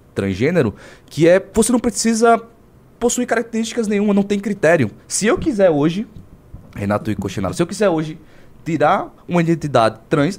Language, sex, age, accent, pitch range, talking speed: Portuguese, male, 20-39, Brazilian, 125-205 Hz, 155 wpm